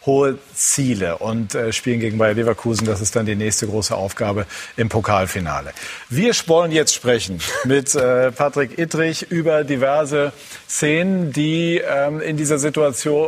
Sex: male